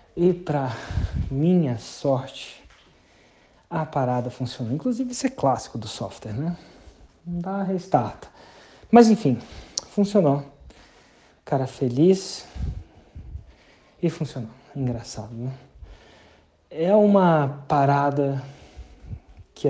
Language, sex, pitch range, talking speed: Portuguese, male, 120-160 Hz, 90 wpm